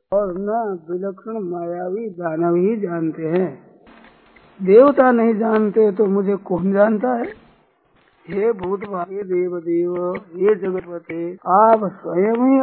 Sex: male